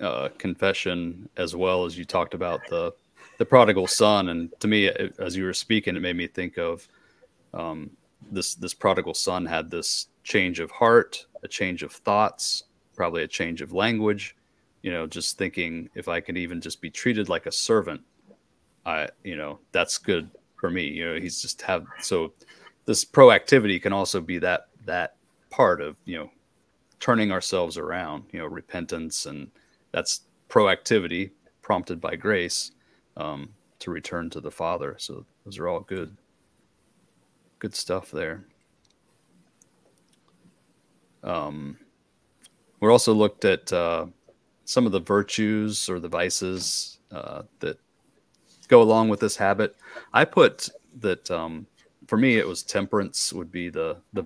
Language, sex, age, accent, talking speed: English, male, 30-49, American, 155 wpm